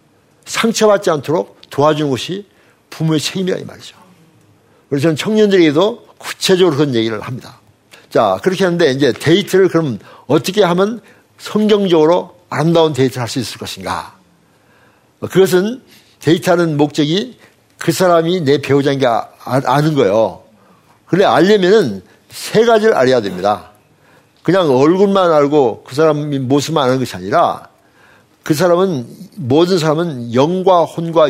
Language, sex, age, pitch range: Korean, male, 60-79, 120-180 Hz